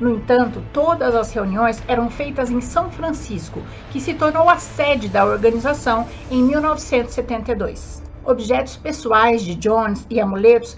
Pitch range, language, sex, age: 225-285 Hz, Portuguese, female, 60-79